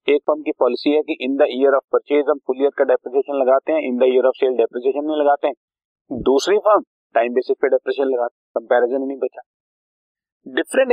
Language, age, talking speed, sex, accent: Hindi, 40-59, 110 wpm, male, native